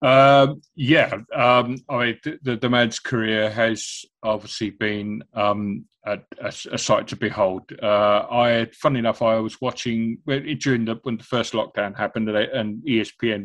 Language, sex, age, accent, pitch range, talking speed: English, male, 30-49, British, 110-125 Hz, 155 wpm